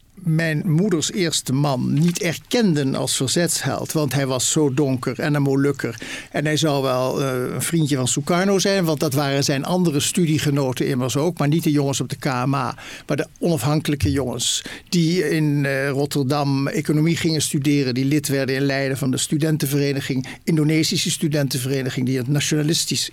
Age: 60-79